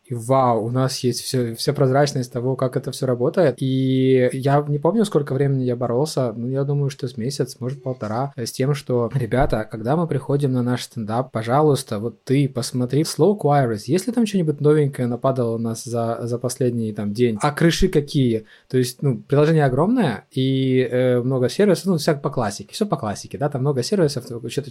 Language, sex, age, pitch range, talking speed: Ukrainian, male, 20-39, 125-155 Hz, 195 wpm